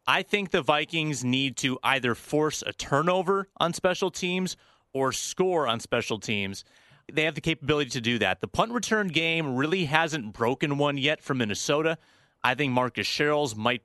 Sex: male